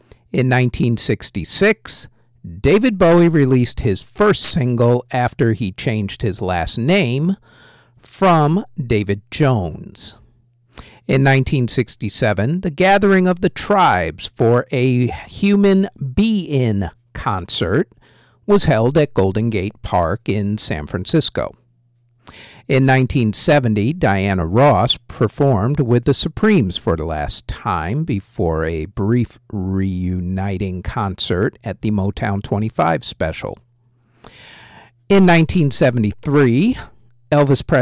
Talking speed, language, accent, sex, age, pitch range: 100 wpm, English, American, male, 50-69, 105-140 Hz